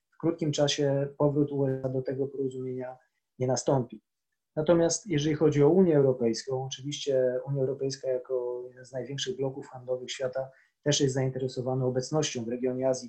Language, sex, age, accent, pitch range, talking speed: Polish, male, 20-39, native, 130-155 Hz, 145 wpm